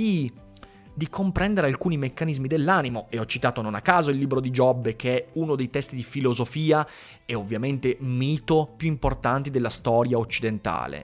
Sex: male